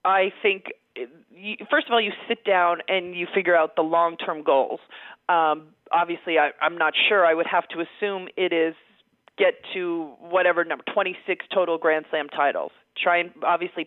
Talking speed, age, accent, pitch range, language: 170 wpm, 40-59, American, 170-220 Hz, English